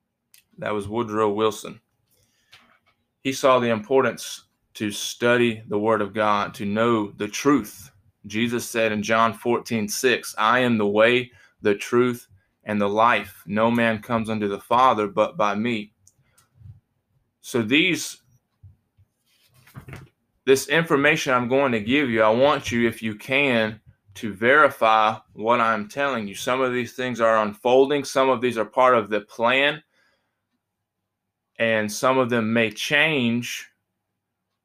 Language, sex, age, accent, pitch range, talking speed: English, male, 20-39, American, 105-125 Hz, 145 wpm